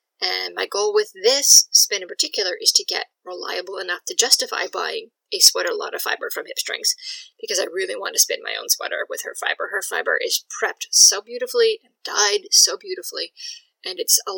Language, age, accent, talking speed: English, 20-39, American, 195 wpm